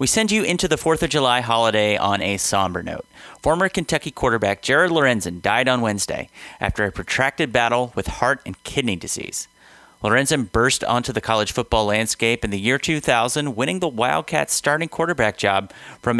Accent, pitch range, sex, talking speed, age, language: American, 105-140 Hz, male, 180 wpm, 30-49, English